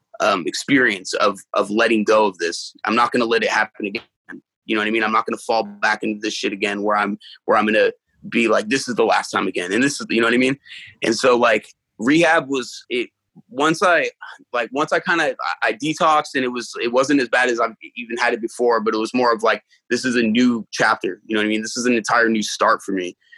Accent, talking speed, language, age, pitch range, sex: American, 265 wpm, English, 20-39, 110-150 Hz, male